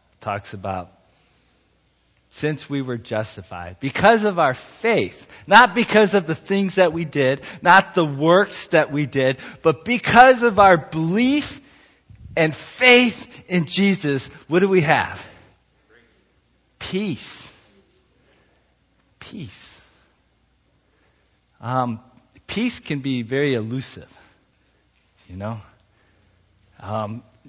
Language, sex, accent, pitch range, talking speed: English, male, American, 100-155 Hz, 105 wpm